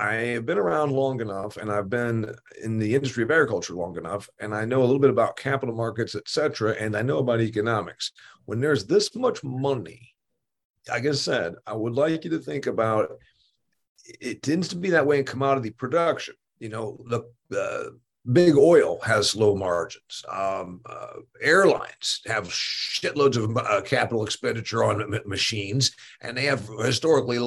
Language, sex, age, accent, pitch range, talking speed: English, male, 50-69, American, 105-135 Hz, 175 wpm